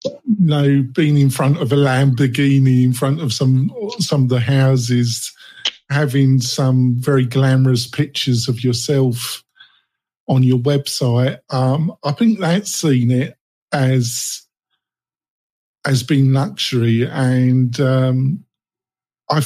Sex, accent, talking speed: male, British, 125 wpm